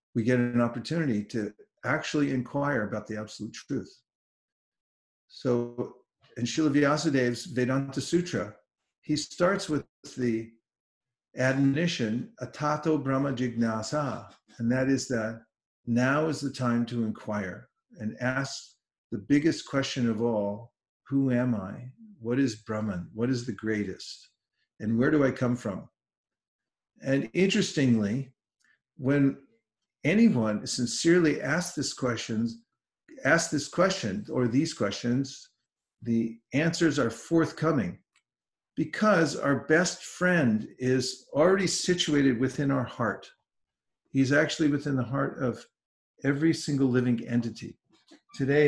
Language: English